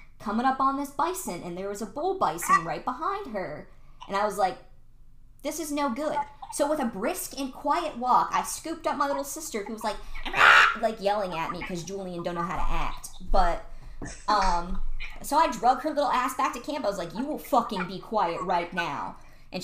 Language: English